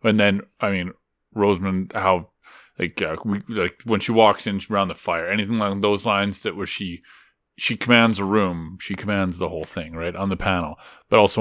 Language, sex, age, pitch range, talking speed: English, male, 30-49, 85-100 Hz, 205 wpm